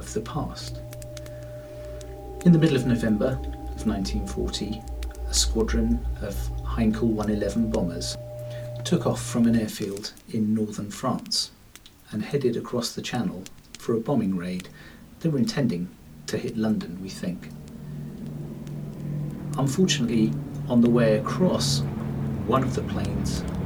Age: 40-59